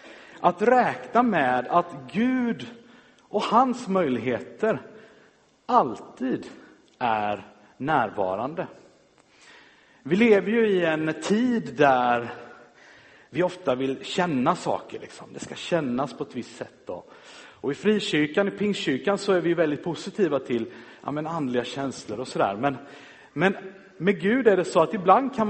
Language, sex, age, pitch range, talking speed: Swedish, male, 50-69, 135-205 Hz, 140 wpm